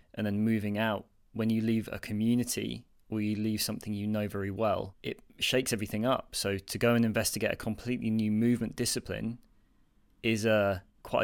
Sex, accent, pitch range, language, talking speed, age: male, British, 100-115 Hz, English, 175 wpm, 20-39